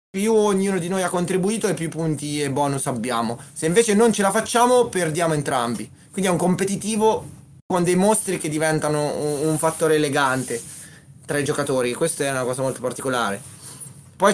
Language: Italian